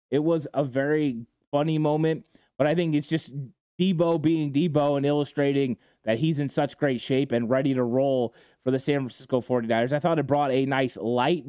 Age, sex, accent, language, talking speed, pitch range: 20-39, male, American, English, 200 wpm, 125-150 Hz